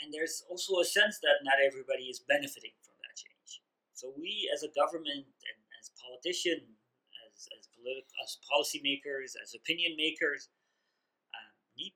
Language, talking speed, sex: English, 145 wpm, male